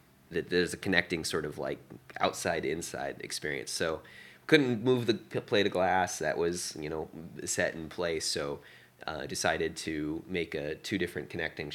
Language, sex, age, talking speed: English, male, 30-49, 170 wpm